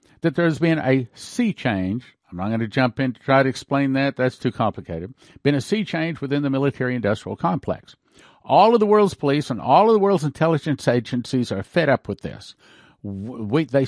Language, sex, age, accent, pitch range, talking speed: English, male, 50-69, American, 100-140 Hz, 210 wpm